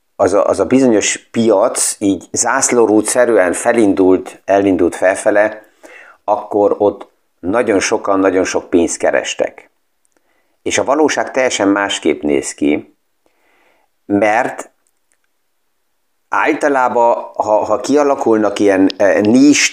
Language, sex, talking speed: Hungarian, male, 95 wpm